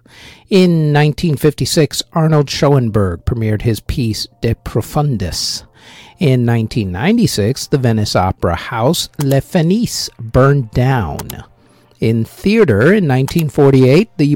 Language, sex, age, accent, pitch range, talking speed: English, male, 50-69, American, 115-160 Hz, 95 wpm